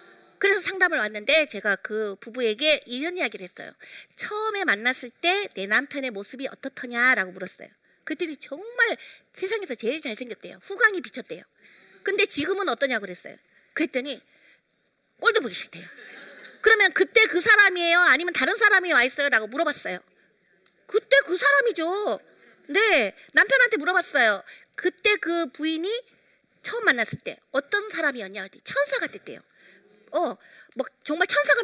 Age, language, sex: 40-59, Korean, female